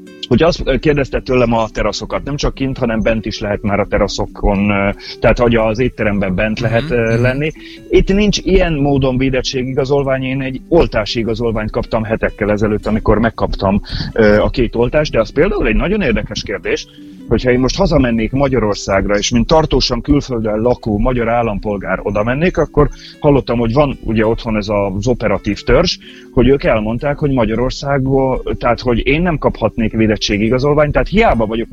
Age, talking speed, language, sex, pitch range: 30-49, 160 wpm, Hungarian, male, 110-140 Hz